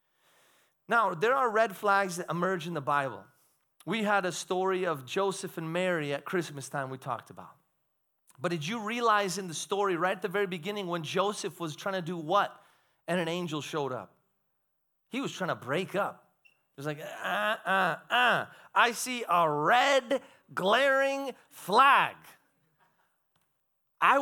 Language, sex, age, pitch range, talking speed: English, male, 30-49, 170-250 Hz, 165 wpm